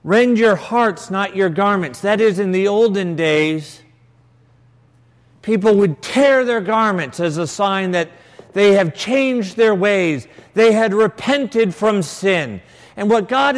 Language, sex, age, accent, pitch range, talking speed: English, male, 50-69, American, 125-195 Hz, 150 wpm